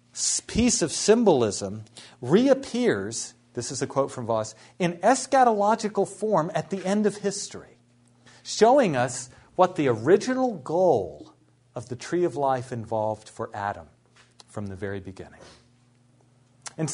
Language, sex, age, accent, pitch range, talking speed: English, male, 40-59, American, 125-195 Hz, 130 wpm